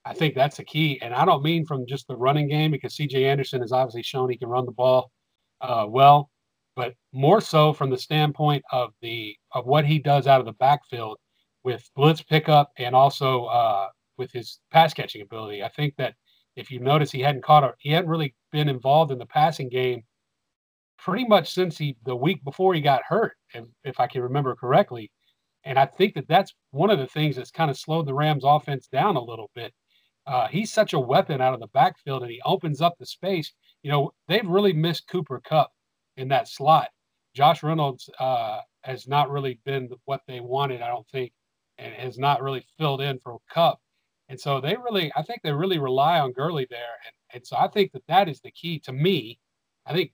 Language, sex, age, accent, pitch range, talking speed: English, male, 40-59, American, 130-160 Hz, 215 wpm